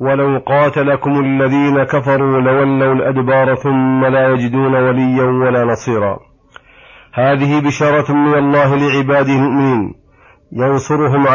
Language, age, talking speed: Arabic, 40-59, 100 wpm